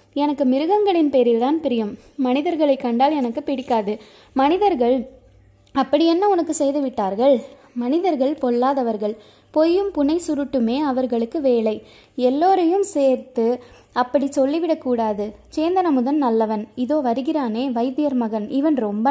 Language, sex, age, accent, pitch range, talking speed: Tamil, female, 20-39, native, 245-310 Hz, 105 wpm